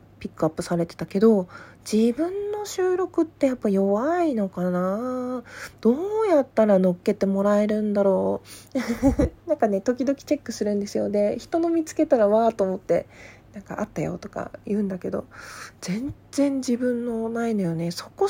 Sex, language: female, Japanese